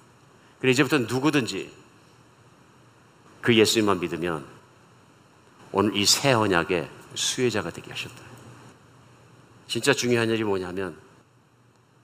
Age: 50-69